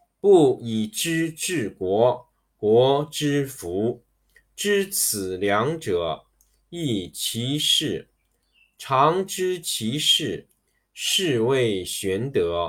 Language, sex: Chinese, male